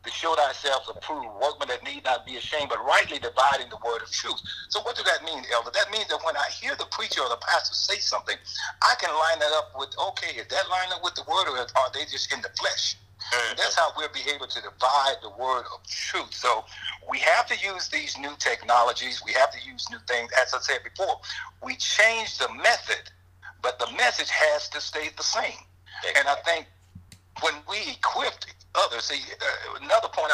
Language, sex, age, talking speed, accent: English, male, 60-79, 220 wpm, American